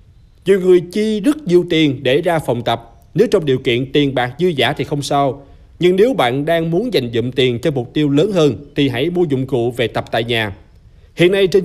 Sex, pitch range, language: male, 125-175 Hz, Vietnamese